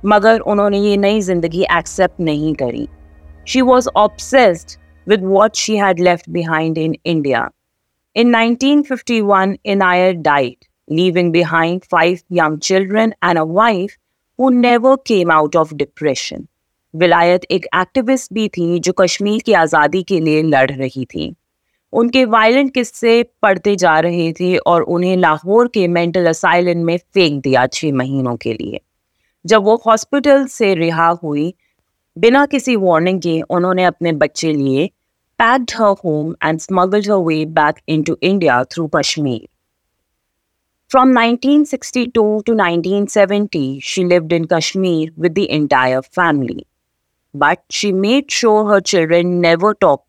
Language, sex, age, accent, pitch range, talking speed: English, female, 30-49, Indian, 160-215 Hz, 130 wpm